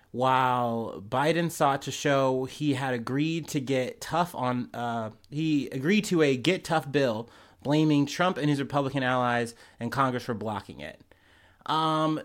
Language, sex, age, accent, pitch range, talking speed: English, male, 30-49, American, 125-160 Hz, 155 wpm